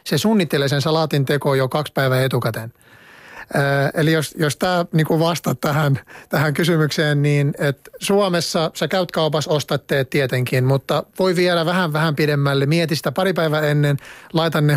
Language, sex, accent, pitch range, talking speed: Finnish, male, native, 135-155 Hz, 160 wpm